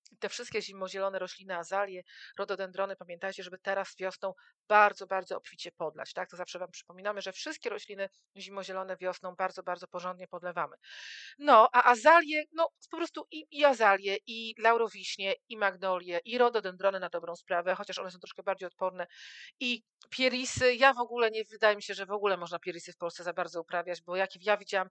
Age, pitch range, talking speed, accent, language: 40-59, 185-225 Hz, 180 wpm, native, Polish